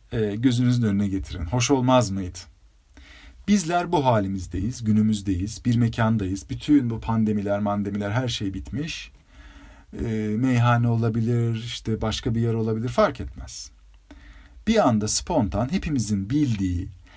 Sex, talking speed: male, 120 wpm